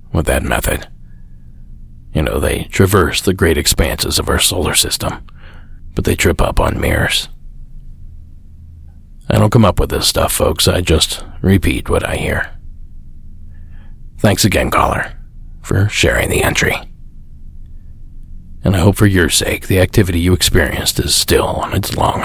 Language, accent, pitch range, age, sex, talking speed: English, American, 75-95 Hz, 40-59, male, 150 wpm